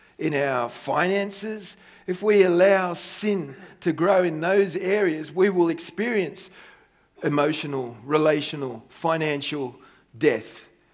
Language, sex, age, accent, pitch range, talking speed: English, male, 40-59, Australian, 155-205 Hz, 105 wpm